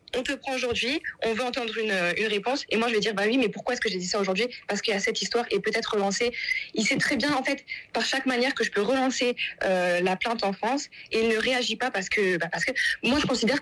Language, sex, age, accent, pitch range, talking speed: French, female, 20-39, French, 195-255 Hz, 285 wpm